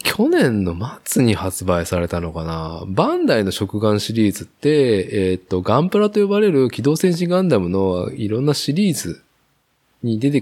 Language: Japanese